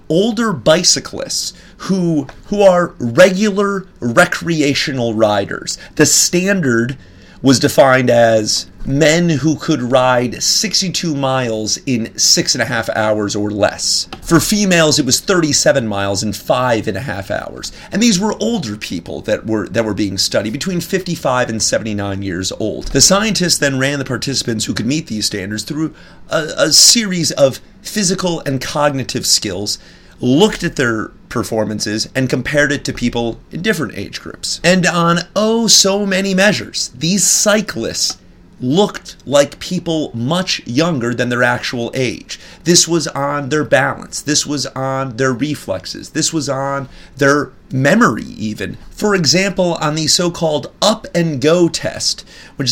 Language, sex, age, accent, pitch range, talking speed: English, male, 30-49, American, 120-175 Hz, 155 wpm